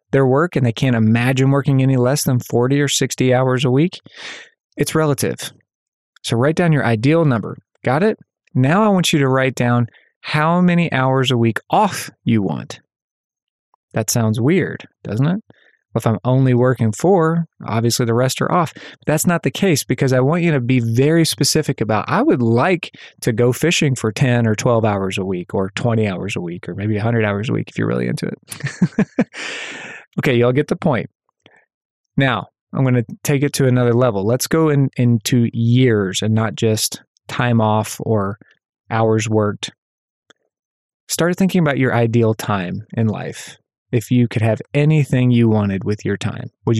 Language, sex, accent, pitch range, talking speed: English, male, American, 115-150 Hz, 185 wpm